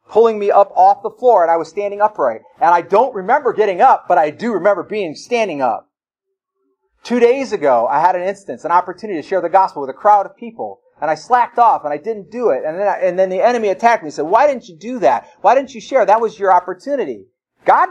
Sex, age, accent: male, 40-59, American